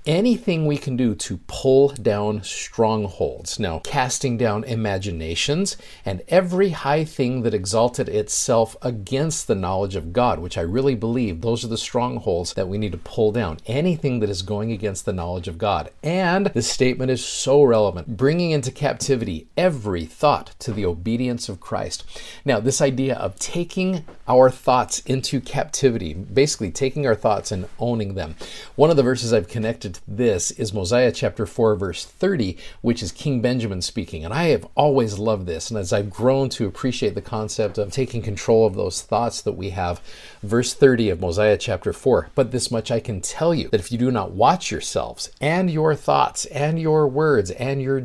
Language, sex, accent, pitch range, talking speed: English, male, American, 105-135 Hz, 185 wpm